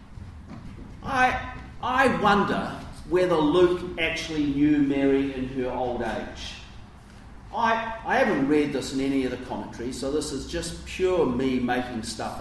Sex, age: male, 40-59